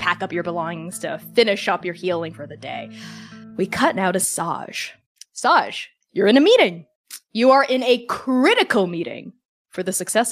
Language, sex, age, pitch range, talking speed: English, female, 20-39, 185-245 Hz, 180 wpm